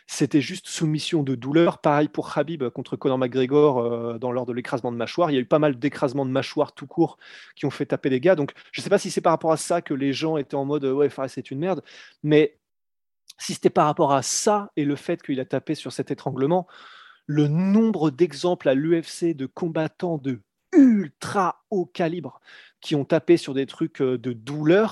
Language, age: French, 30-49